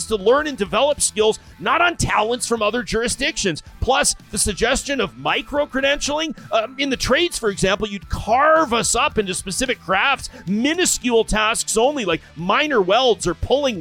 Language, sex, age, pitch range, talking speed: English, male, 40-59, 185-245 Hz, 160 wpm